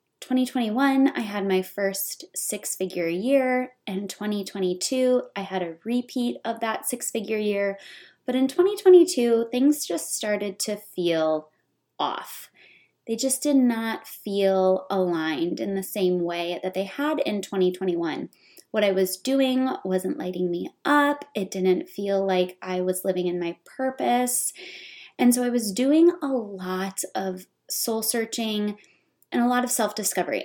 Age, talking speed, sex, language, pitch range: 20-39, 145 wpm, female, English, 185-255 Hz